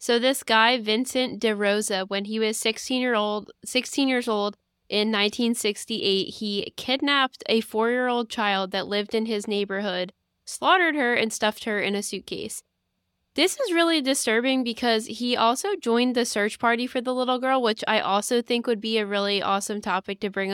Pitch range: 190-230 Hz